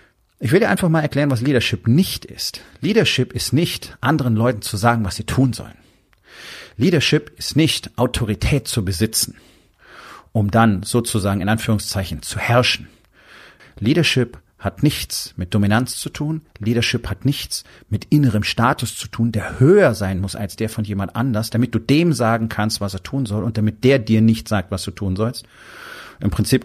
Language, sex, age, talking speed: German, male, 40-59, 180 wpm